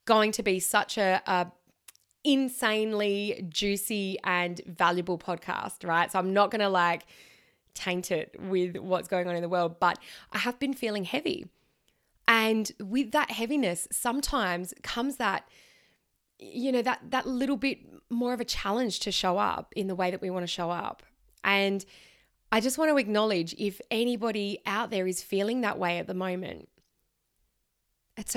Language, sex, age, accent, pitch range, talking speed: English, female, 20-39, Australian, 185-230 Hz, 170 wpm